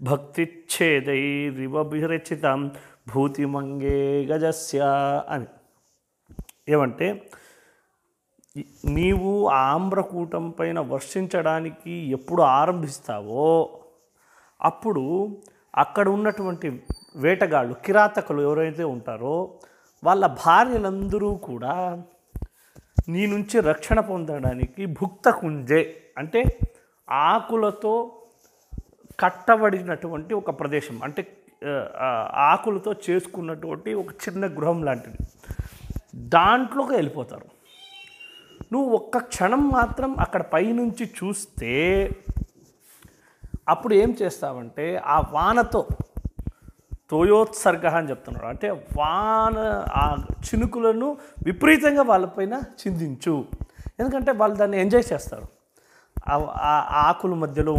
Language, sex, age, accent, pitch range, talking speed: Telugu, male, 30-49, native, 150-220 Hz, 75 wpm